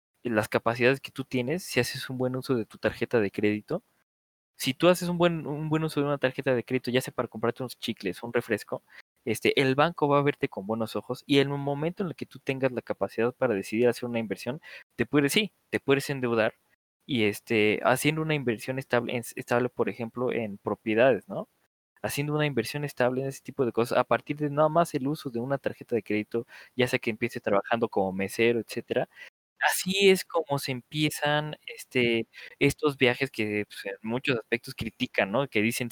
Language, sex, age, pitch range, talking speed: Spanish, male, 20-39, 110-140 Hz, 210 wpm